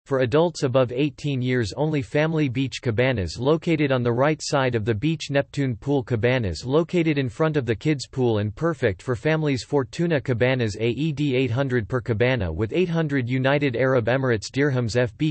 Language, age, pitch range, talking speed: English, 30-49, 125-145 Hz, 175 wpm